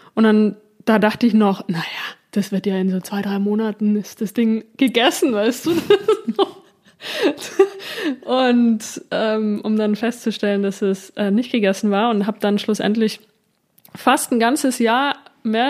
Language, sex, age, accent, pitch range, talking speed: German, female, 20-39, German, 215-245 Hz, 155 wpm